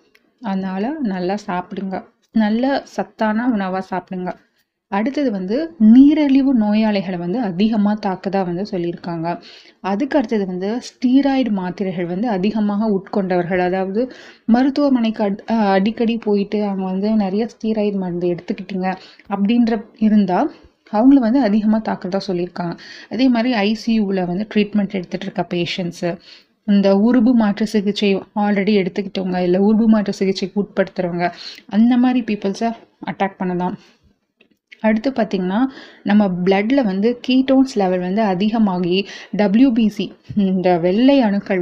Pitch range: 190-230 Hz